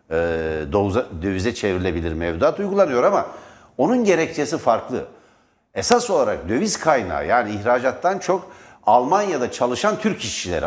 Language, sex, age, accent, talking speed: Turkish, male, 60-79, native, 105 wpm